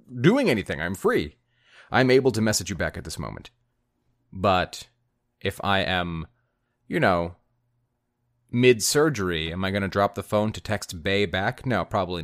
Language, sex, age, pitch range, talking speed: English, male, 30-49, 100-120 Hz, 160 wpm